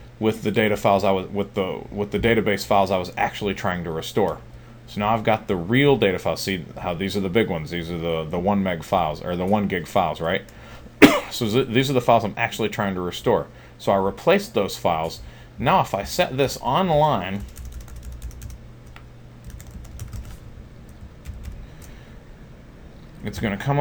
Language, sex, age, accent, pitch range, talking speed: English, male, 40-59, American, 90-115 Hz, 180 wpm